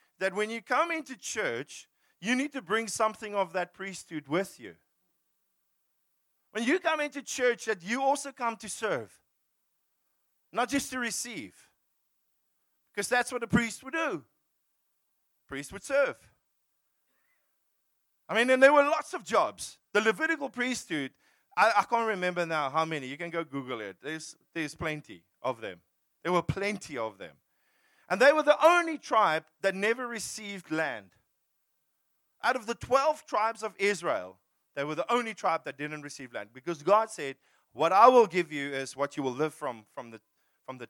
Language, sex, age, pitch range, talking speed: English, male, 40-59, 180-250 Hz, 175 wpm